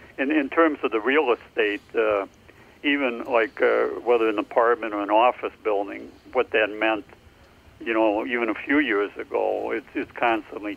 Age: 60-79